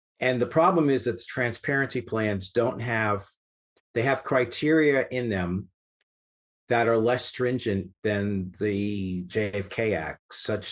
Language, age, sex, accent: English, 50-69, male, American